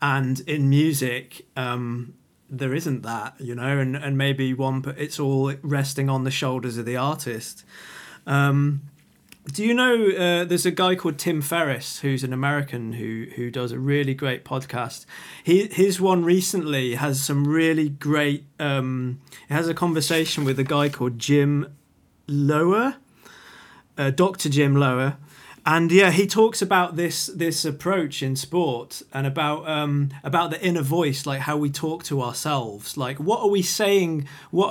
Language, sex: English, male